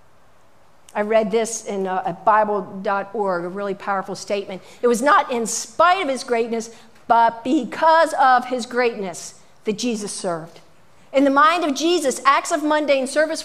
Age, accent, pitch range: 50-69, American, 220-310 Hz